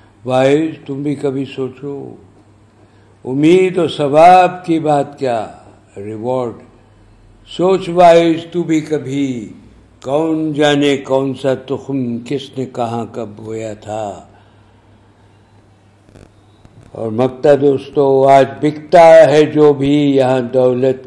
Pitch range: 105-145 Hz